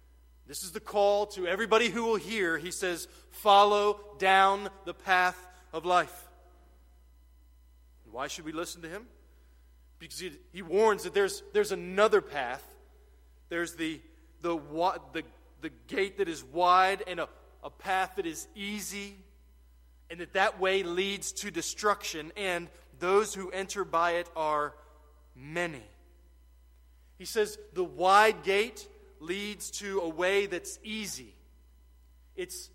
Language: English